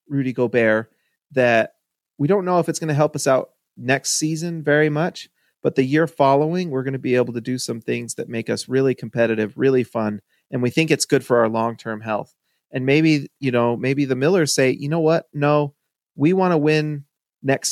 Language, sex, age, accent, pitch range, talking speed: English, male, 30-49, American, 120-160 Hz, 215 wpm